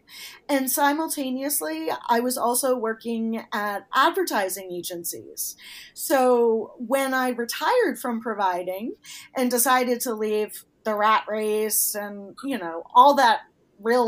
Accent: American